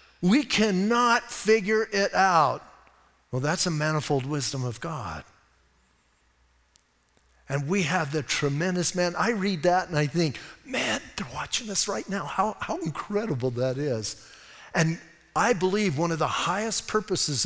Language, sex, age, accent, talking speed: English, male, 50-69, American, 150 wpm